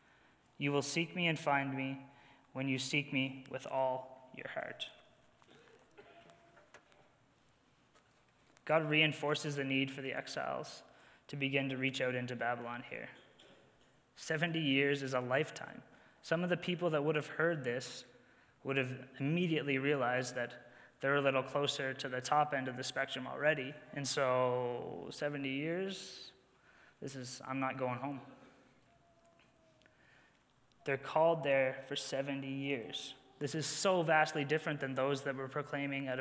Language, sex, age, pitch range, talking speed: English, male, 20-39, 130-150 Hz, 145 wpm